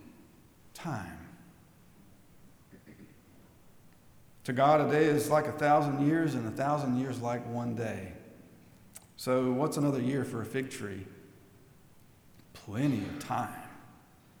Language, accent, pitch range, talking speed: English, American, 125-160 Hz, 115 wpm